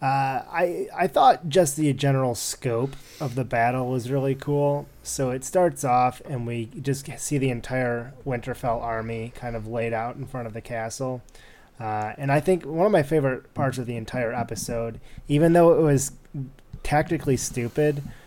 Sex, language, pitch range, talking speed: male, English, 115-135 Hz, 175 wpm